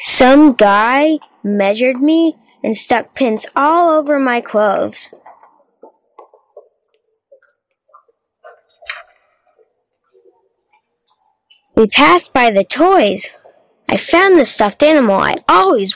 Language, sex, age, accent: Chinese, female, 20-39, American